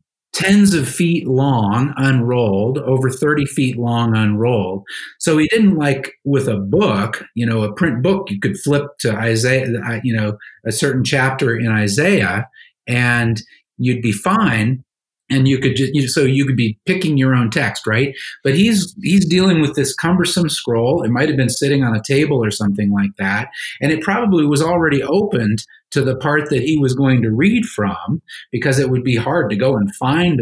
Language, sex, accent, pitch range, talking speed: English, male, American, 115-150 Hz, 190 wpm